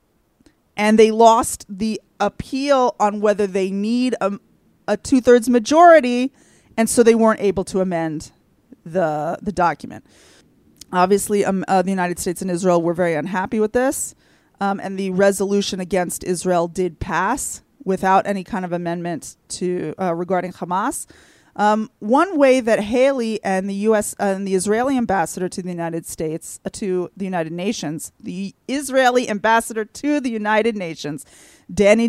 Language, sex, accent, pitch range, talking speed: English, female, American, 185-235 Hz, 155 wpm